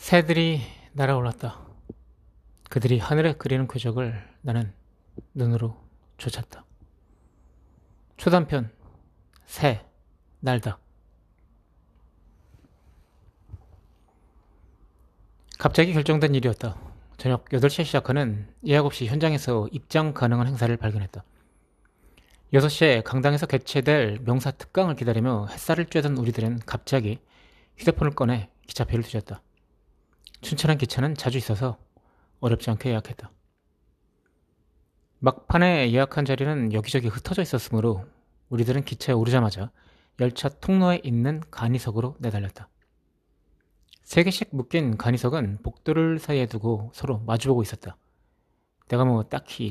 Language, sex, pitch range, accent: Korean, male, 105-140 Hz, native